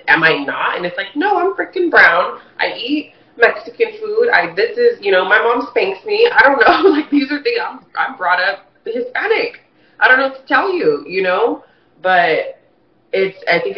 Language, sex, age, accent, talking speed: English, female, 30-49, American, 215 wpm